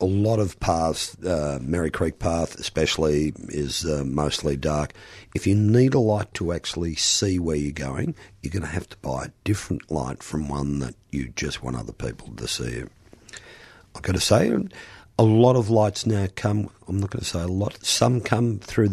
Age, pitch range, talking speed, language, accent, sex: 50-69, 75-105 Hz, 200 wpm, English, Australian, male